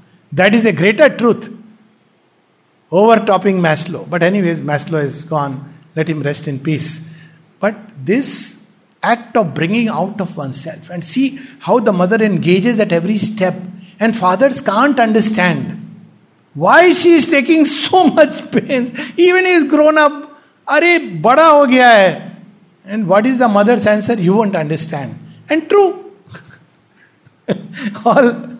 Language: English